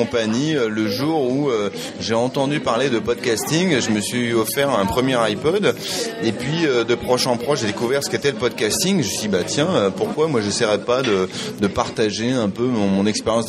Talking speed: 220 wpm